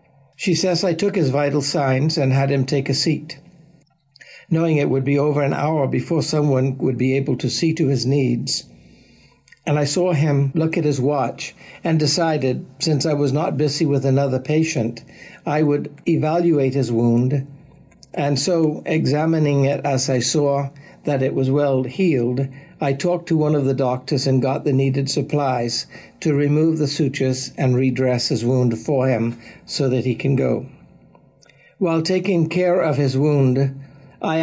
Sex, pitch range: male, 135-160 Hz